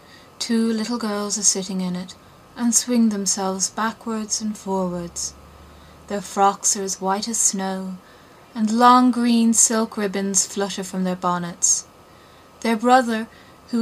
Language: English